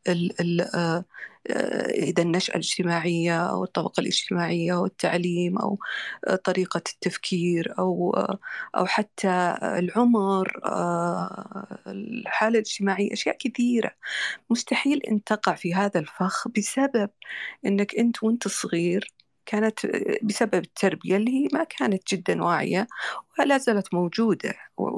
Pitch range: 180-220 Hz